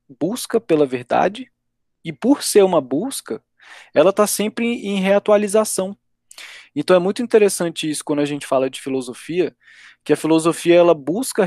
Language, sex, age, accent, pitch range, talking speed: Portuguese, male, 20-39, Brazilian, 145-195 Hz, 150 wpm